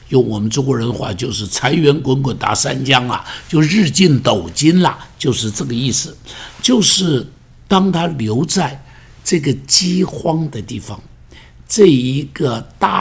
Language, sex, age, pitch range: Chinese, male, 60-79, 120-170 Hz